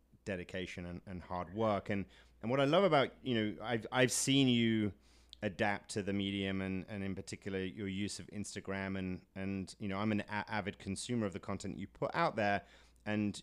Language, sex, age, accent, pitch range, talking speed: English, male, 30-49, British, 90-105 Hz, 200 wpm